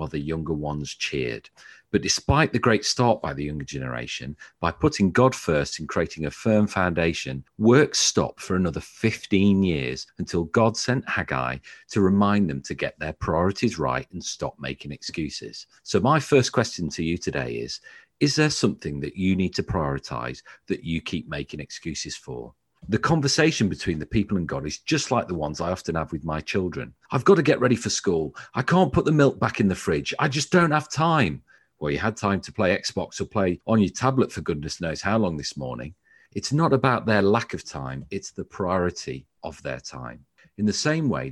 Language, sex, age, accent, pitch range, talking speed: English, male, 40-59, British, 80-125 Hz, 205 wpm